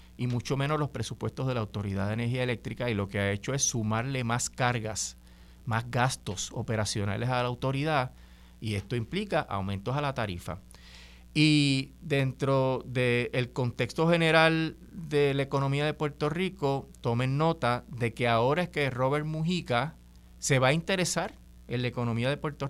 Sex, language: male, Spanish